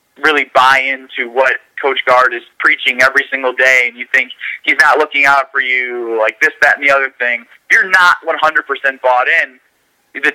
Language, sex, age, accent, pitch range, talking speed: English, male, 30-49, American, 130-150 Hz, 195 wpm